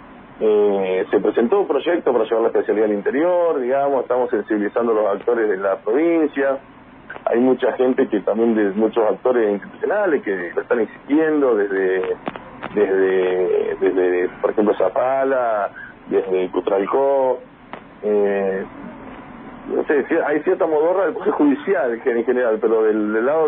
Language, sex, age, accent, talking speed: English, male, 40-59, Argentinian, 140 wpm